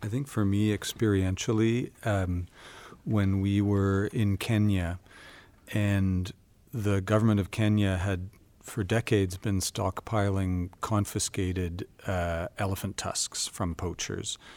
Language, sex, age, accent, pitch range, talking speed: English, male, 40-59, American, 85-105 Hz, 110 wpm